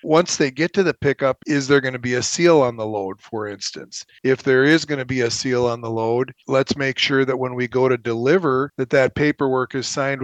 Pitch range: 125-145 Hz